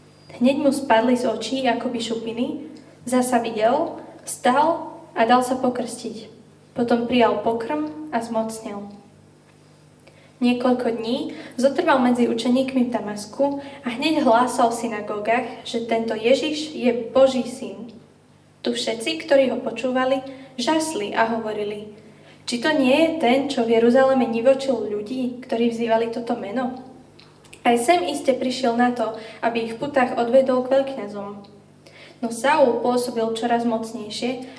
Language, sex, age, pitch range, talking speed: Slovak, female, 10-29, 230-270 Hz, 135 wpm